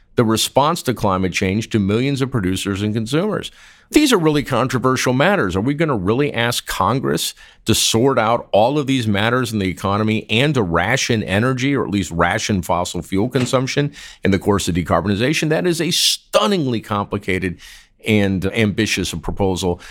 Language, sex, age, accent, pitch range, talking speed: English, male, 50-69, American, 95-130 Hz, 170 wpm